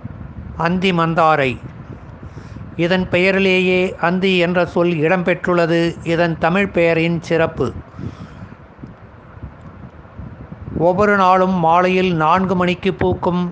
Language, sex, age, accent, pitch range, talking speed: Tamil, male, 60-79, native, 165-190 Hz, 80 wpm